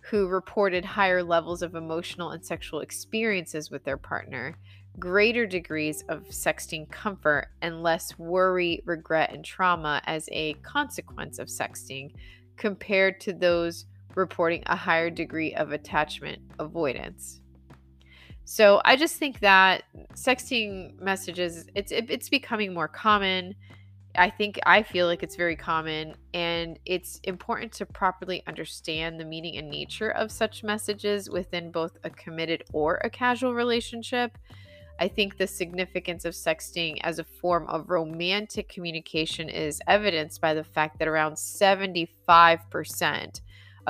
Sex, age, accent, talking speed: female, 20-39, American, 135 wpm